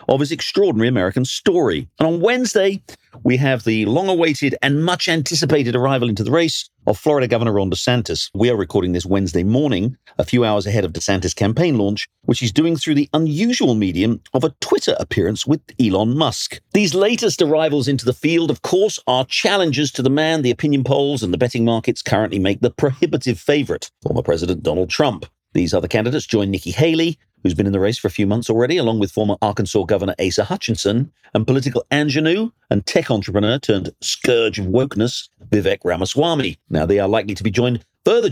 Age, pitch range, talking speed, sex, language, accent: 50-69, 105-155 Hz, 195 wpm, male, English, British